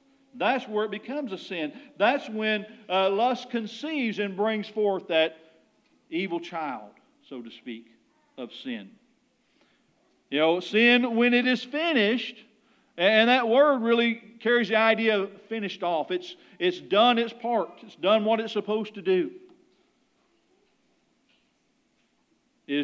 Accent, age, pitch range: American, 50-69, 185-255 Hz